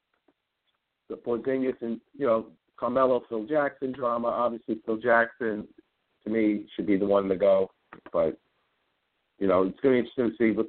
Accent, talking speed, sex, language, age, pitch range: American, 175 wpm, male, English, 50-69, 100-120 Hz